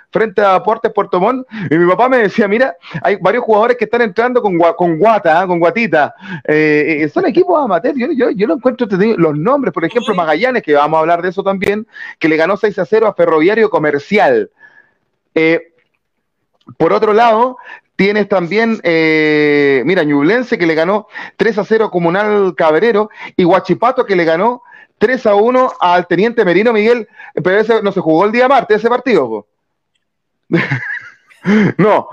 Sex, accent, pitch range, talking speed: male, Venezuelan, 165-230 Hz, 180 wpm